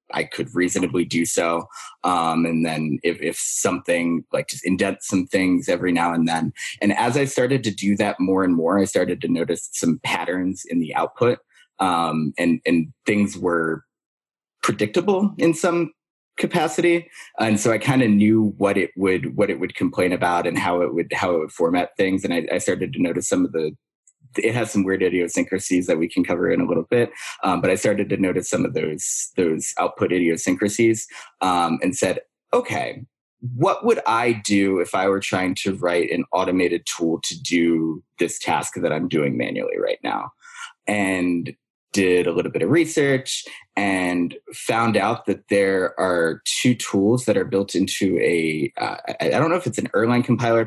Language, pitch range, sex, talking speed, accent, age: English, 90-115 Hz, male, 190 wpm, American, 20-39